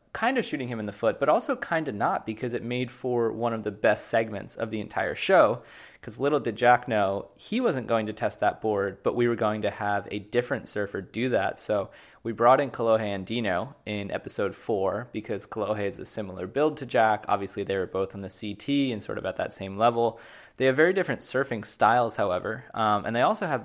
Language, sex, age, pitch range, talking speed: English, male, 20-39, 105-120 Hz, 235 wpm